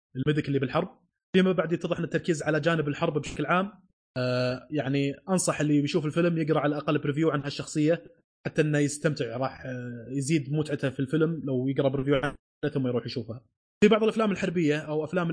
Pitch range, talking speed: 140-165 Hz, 180 wpm